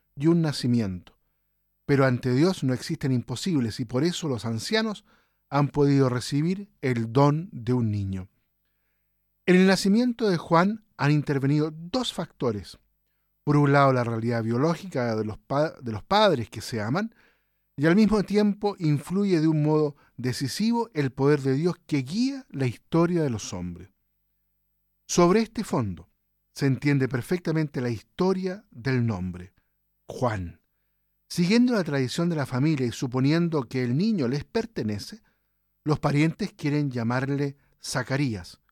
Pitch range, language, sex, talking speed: 125-175 Hz, Spanish, male, 145 wpm